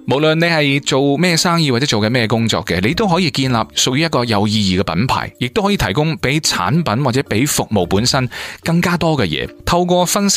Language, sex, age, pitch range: Chinese, male, 20-39, 100-140 Hz